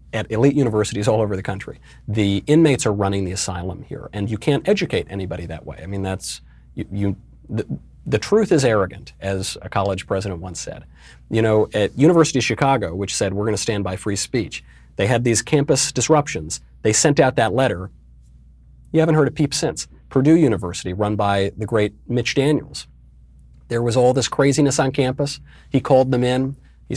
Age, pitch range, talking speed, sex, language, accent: 40-59, 95-125 Hz, 190 wpm, male, English, American